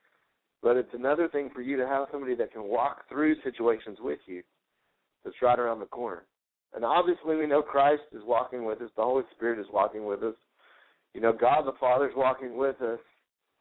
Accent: American